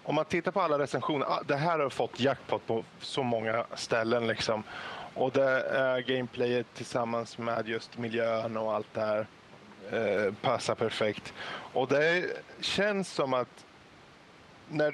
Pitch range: 115-145 Hz